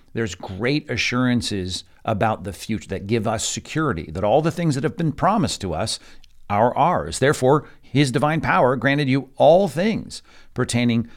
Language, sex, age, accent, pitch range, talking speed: English, male, 50-69, American, 105-135 Hz, 165 wpm